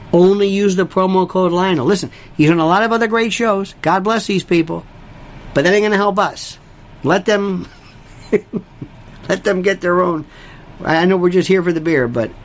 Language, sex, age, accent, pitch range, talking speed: English, male, 50-69, American, 145-220 Hz, 200 wpm